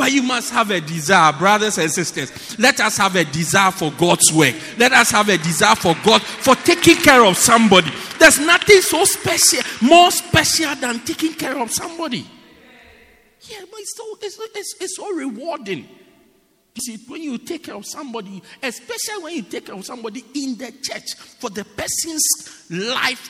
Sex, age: male, 50-69